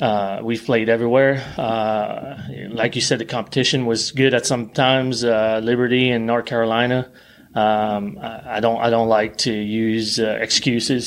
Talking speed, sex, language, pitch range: 170 wpm, male, English, 110-125 Hz